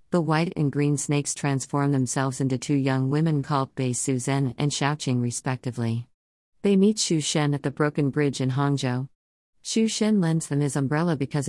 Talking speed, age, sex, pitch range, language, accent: 180 wpm, 50-69, female, 130-160 Hz, English, American